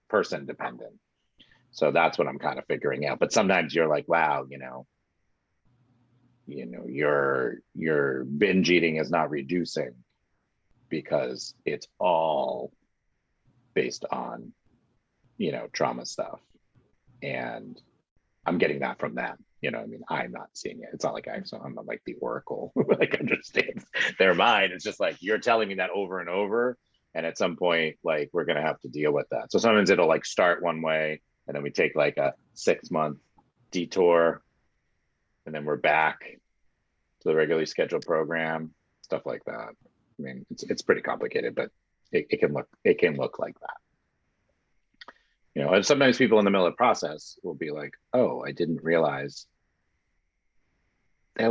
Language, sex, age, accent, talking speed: English, male, 30-49, American, 170 wpm